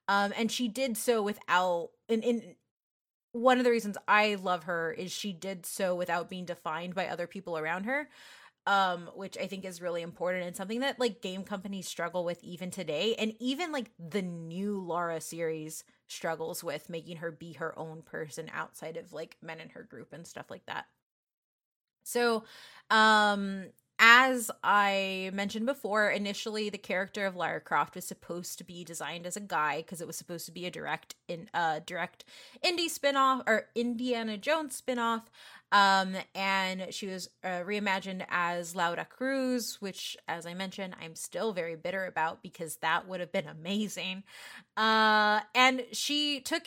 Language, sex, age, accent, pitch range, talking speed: English, female, 20-39, American, 180-235 Hz, 175 wpm